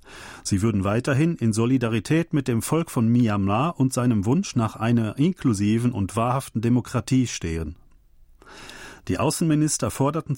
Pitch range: 105-140 Hz